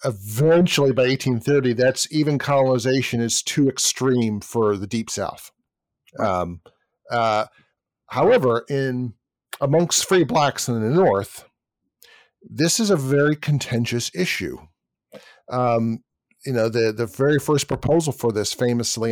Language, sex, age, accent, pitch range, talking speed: English, male, 50-69, American, 110-135 Hz, 125 wpm